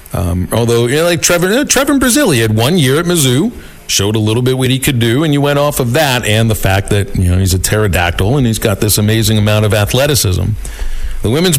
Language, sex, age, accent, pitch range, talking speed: English, male, 50-69, American, 105-135 Hz, 260 wpm